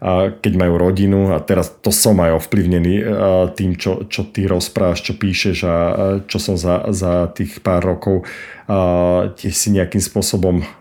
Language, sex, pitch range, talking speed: Slovak, male, 90-100 Hz, 160 wpm